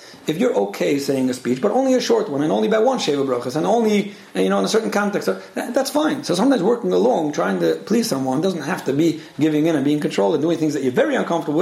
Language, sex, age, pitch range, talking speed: English, male, 40-59, 135-195 Hz, 265 wpm